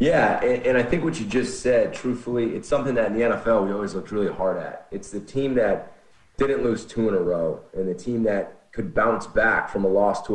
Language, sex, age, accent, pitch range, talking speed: English, male, 30-49, American, 95-145 Hz, 250 wpm